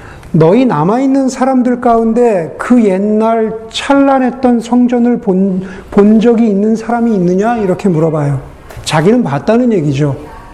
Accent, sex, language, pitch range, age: native, male, Korean, 190-250 Hz, 40-59